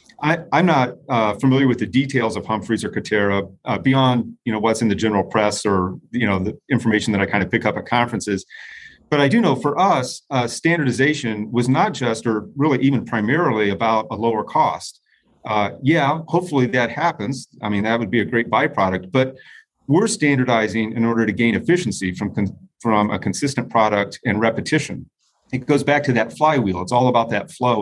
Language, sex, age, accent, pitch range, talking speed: English, male, 40-59, American, 105-130 Hz, 200 wpm